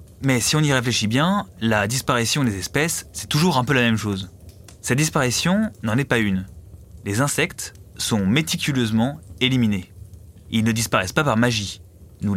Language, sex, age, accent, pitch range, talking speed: French, male, 20-39, French, 100-140 Hz, 170 wpm